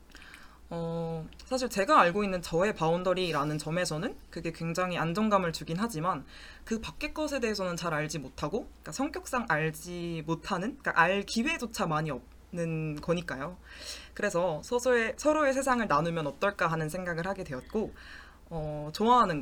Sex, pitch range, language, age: female, 160-225 Hz, Korean, 20-39